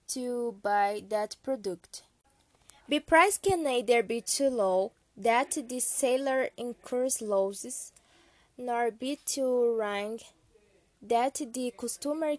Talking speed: 110 wpm